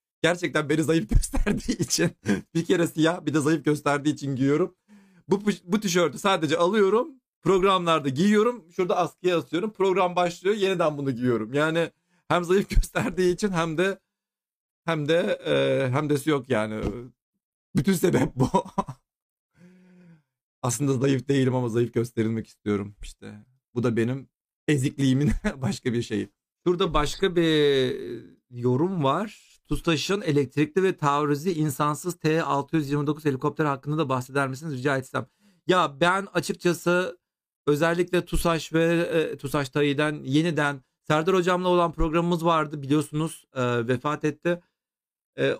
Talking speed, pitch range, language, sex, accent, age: 130 wpm, 140-175 Hz, Turkish, male, native, 40-59